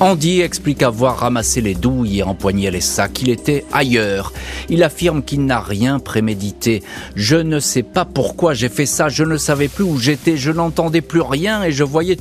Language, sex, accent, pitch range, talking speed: French, male, French, 100-145 Hz, 200 wpm